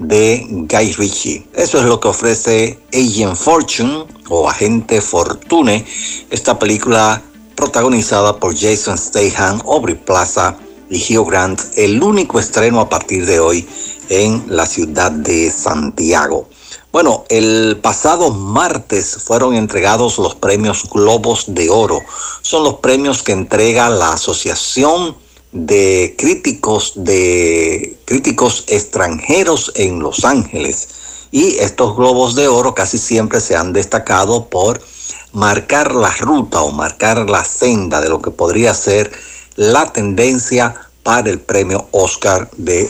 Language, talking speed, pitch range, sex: Spanish, 130 wpm, 100-120 Hz, male